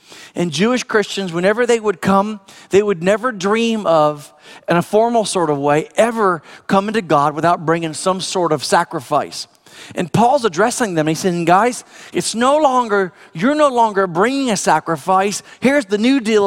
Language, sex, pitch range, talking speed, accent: English, male, 160-210 Hz, 175 wpm, American